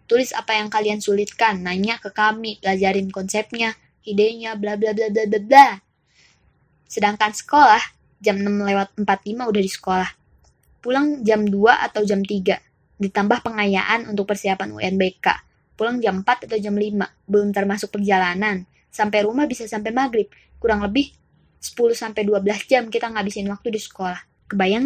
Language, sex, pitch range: Indonesian, female, 200-245 Hz